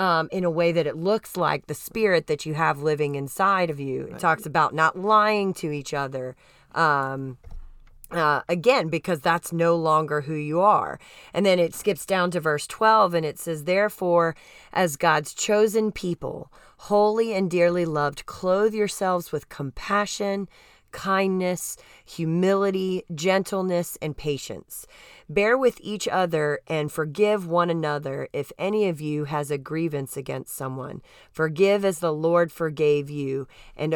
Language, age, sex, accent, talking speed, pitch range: English, 30-49, female, American, 155 wpm, 145-190 Hz